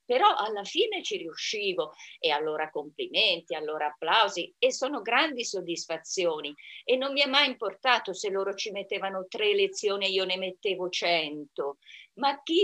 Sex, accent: female, native